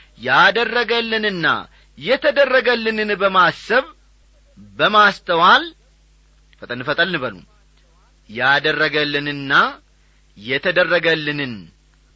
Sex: male